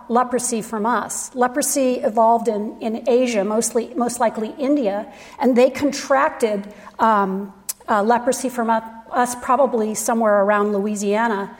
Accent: American